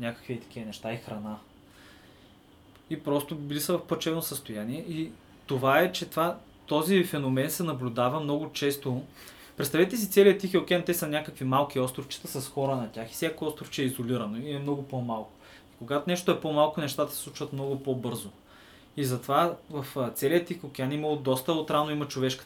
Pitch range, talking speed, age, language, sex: 125-150 Hz, 180 wpm, 20-39, Bulgarian, male